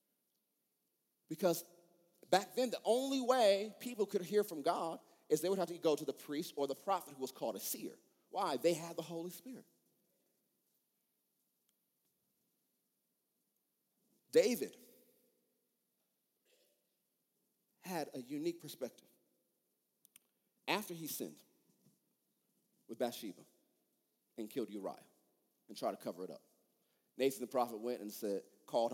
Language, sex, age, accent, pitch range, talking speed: English, male, 40-59, American, 125-200 Hz, 125 wpm